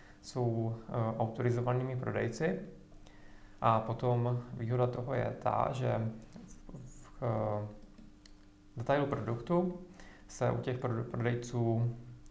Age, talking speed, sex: 20-39, 85 wpm, male